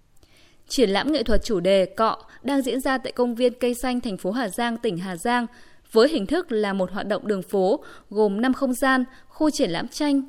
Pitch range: 205-275 Hz